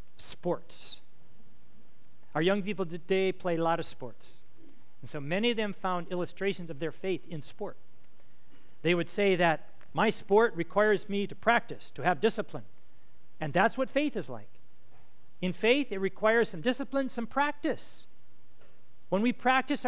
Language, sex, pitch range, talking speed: English, male, 125-200 Hz, 155 wpm